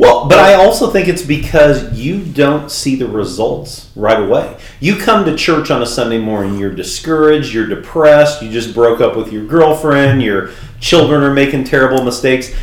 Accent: American